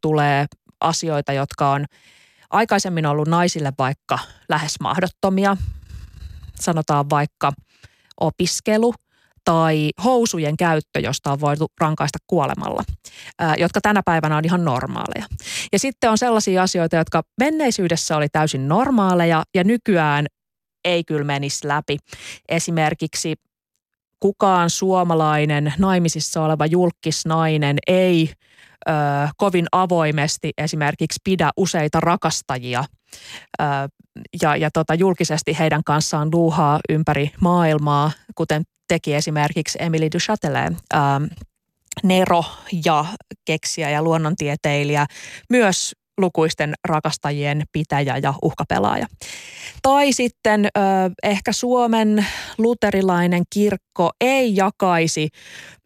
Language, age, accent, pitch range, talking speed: Finnish, 30-49, native, 150-185 Hz, 95 wpm